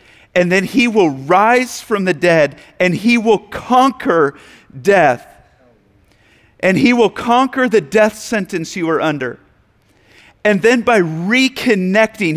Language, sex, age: English, male, 40-59